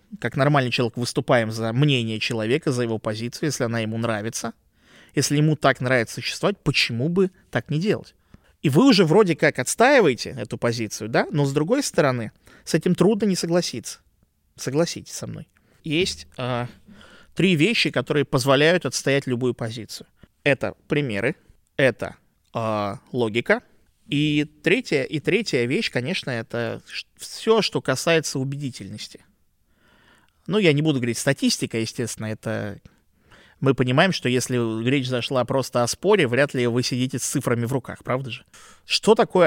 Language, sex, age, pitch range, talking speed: Russian, male, 20-39, 120-155 Hz, 145 wpm